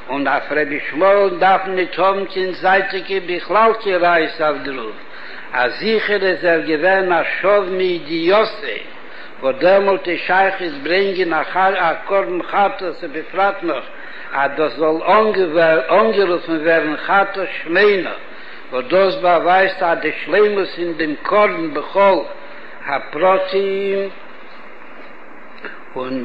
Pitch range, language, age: 175-215 Hz, English, 60-79